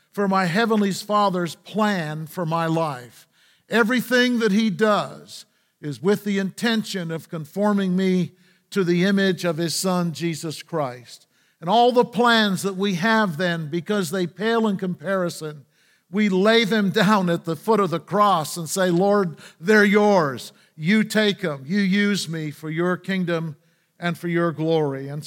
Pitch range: 170-210 Hz